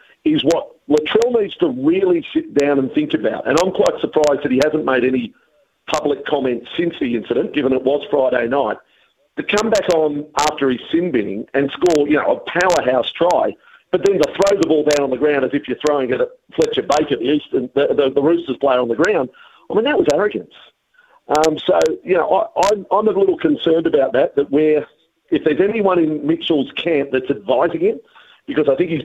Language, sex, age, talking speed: English, male, 50-69, 220 wpm